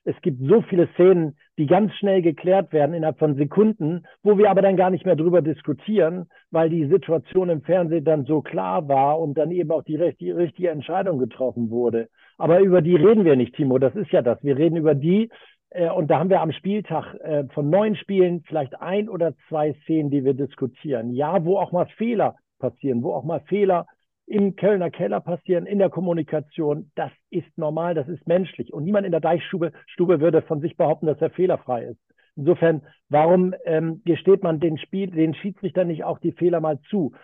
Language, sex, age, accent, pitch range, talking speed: German, male, 50-69, German, 150-185 Hz, 200 wpm